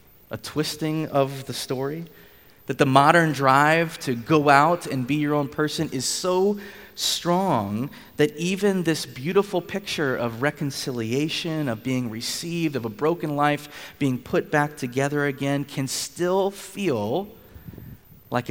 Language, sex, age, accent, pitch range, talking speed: English, male, 30-49, American, 120-150 Hz, 140 wpm